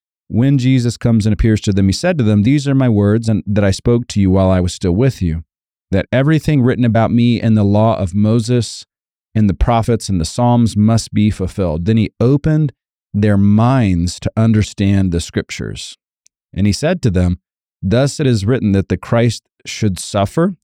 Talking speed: 200 wpm